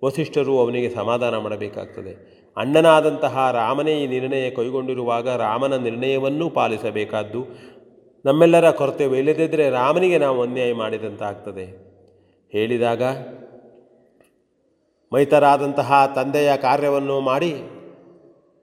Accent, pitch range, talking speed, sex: native, 110-140 Hz, 75 wpm, male